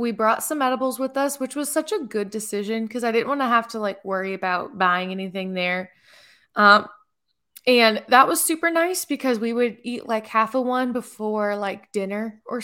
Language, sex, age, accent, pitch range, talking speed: English, female, 20-39, American, 195-245 Hz, 205 wpm